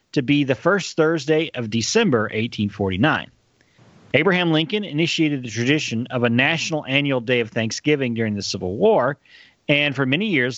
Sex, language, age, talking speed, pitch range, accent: male, English, 40-59, 160 wpm, 115-150 Hz, American